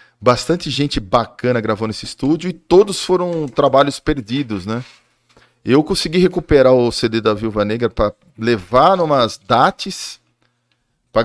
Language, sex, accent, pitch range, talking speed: Portuguese, male, Brazilian, 115-175 Hz, 135 wpm